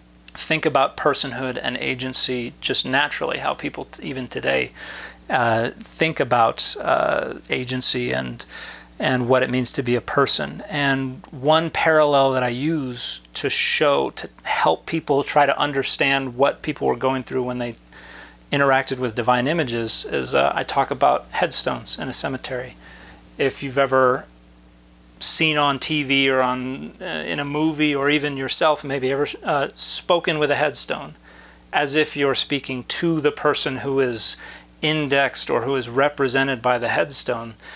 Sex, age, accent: male, 40-59, American